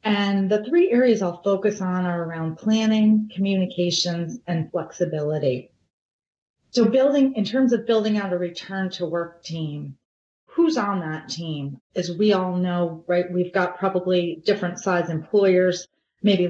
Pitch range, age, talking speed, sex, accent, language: 165-200 Hz, 30-49, 150 wpm, female, American, English